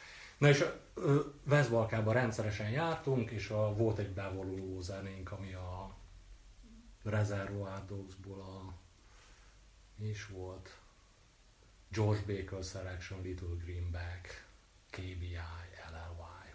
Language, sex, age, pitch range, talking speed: Hungarian, male, 30-49, 100-120 Hz, 95 wpm